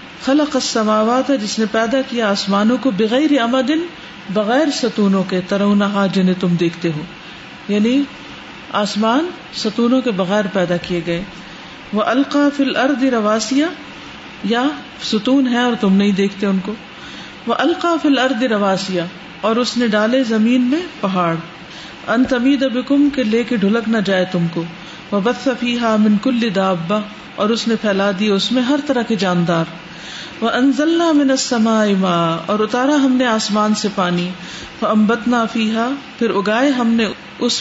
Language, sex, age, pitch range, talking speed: Urdu, female, 40-59, 195-245 Hz, 145 wpm